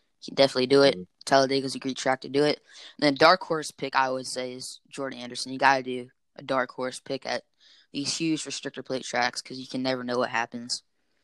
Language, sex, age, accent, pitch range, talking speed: English, female, 10-29, American, 130-140 Hz, 235 wpm